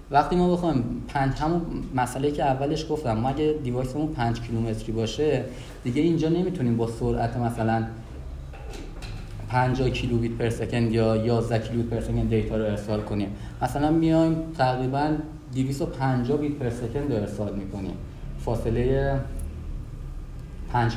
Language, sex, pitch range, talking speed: Persian, male, 115-150 Hz, 125 wpm